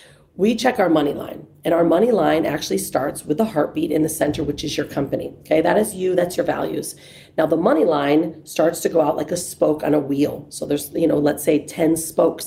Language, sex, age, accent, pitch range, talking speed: English, female, 40-59, American, 155-220 Hz, 240 wpm